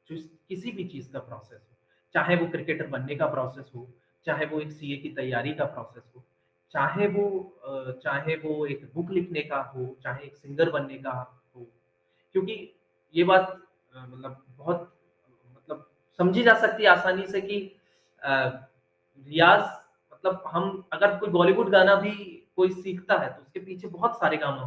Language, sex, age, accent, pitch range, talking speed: Hindi, male, 30-49, native, 130-210 Hz, 165 wpm